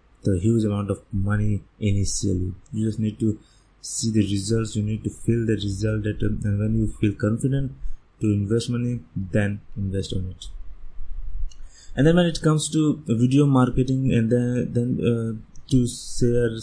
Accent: Indian